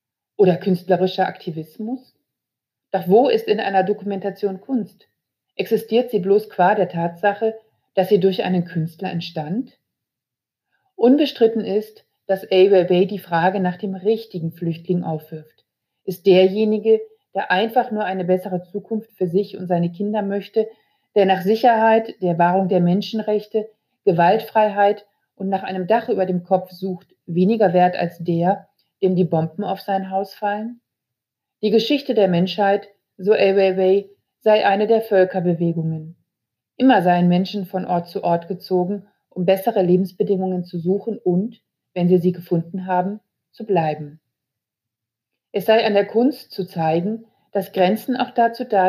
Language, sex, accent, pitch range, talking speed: German, female, German, 180-215 Hz, 145 wpm